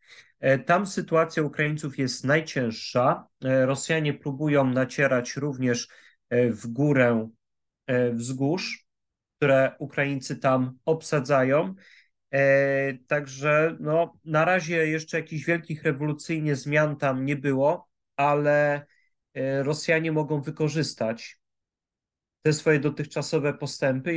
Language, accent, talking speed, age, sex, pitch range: Polish, native, 85 wpm, 30-49, male, 125-155 Hz